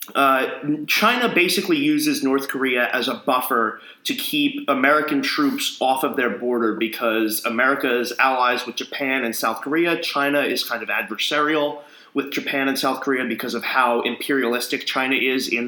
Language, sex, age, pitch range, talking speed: English, male, 20-39, 120-175 Hz, 165 wpm